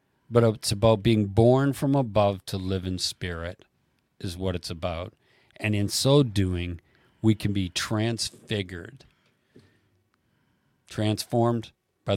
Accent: American